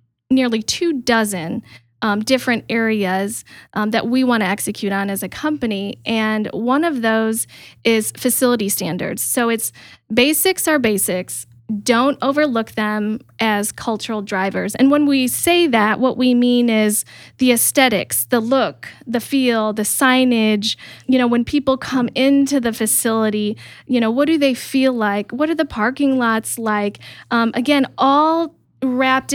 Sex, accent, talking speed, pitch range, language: female, American, 155 wpm, 210-260 Hz, English